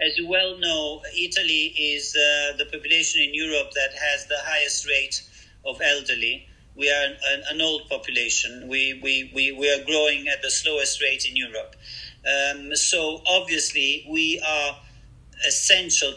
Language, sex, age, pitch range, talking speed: English, male, 40-59, 130-150 Hz, 155 wpm